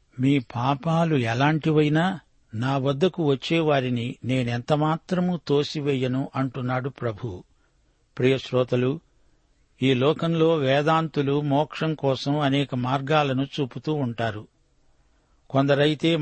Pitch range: 130-155 Hz